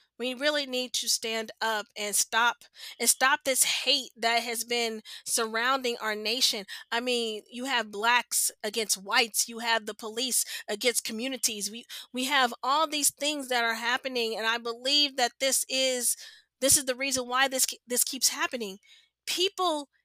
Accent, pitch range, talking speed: American, 235-290 Hz, 170 wpm